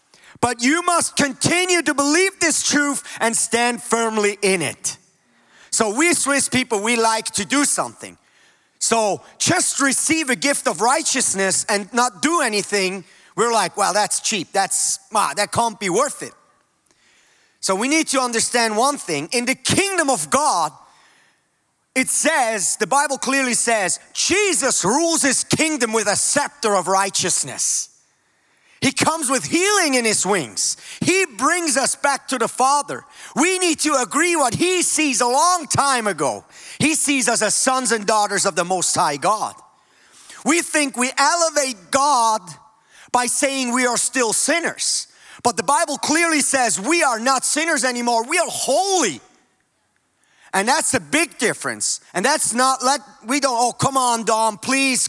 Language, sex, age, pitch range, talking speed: English, male, 30-49, 225-290 Hz, 160 wpm